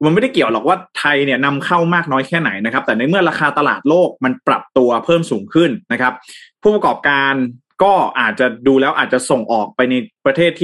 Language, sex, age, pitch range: Thai, male, 20-39, 125-160 Hz